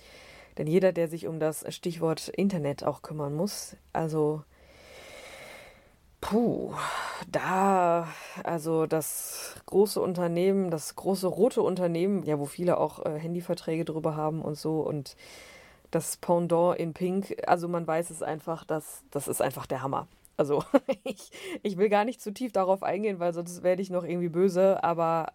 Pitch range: 160-205 Hz